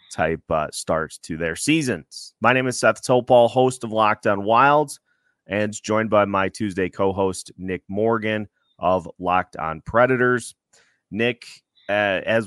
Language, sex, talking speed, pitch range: English, male, 150 wpm, 95-115 Hz